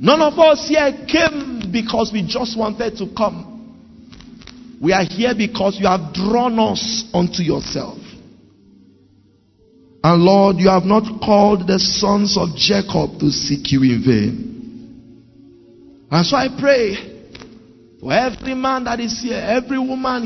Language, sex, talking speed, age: English, male, 140 wpm, 50-69